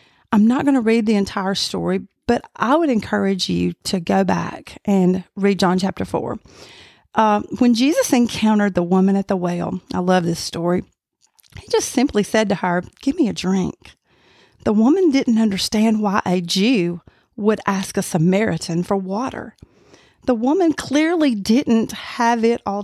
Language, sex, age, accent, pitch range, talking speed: English, female, 40-59, American, 195-245 Hz, 170 wpm